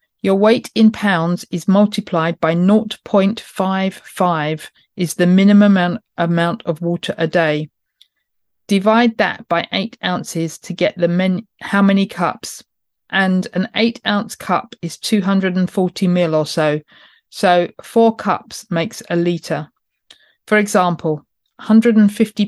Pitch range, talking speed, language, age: 170-210 Hz, 125 wpm, English, 40-59